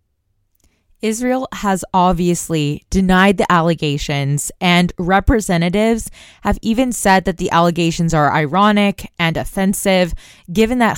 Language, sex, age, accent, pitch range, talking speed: English, female, 20-39, American, 160-205 Hz, 110 wpm